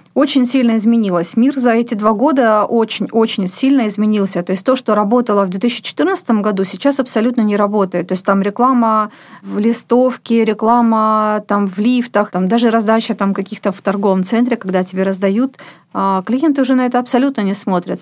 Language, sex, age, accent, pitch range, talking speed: Russian, female, 40-59, native, 200-245 Hz, 170 wpm